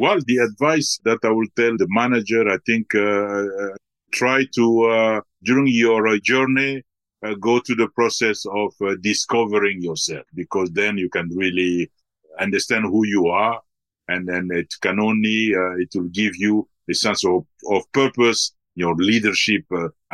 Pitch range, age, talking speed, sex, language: 100-125 Hz, 50-69, 170 wpm, male, English